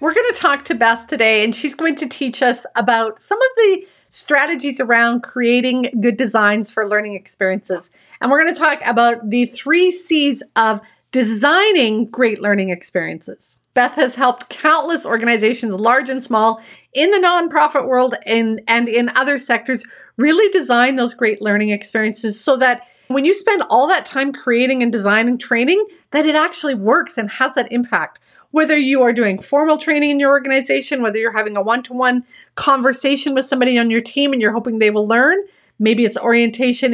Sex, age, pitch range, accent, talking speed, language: female, 40-59, 225-285 Hz, American, 180 wpm, English